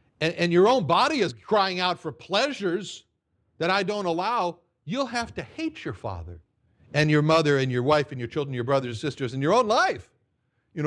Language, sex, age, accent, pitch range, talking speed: English, male, 60-79, American, 130-195 Hz, 210 wpm